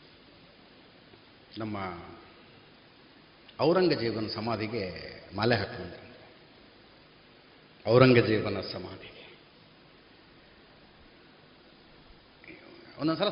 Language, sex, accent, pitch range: Kannada, male, native, 140-230 Hz